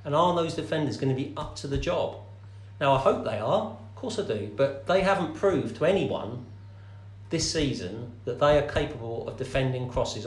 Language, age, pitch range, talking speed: English, 40-59, 110-155 Hz, 200 wpm